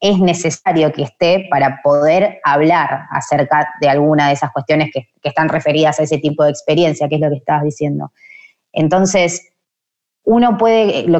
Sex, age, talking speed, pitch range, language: female, 20-39, 170 wpm, 150-205 Hz, Spanish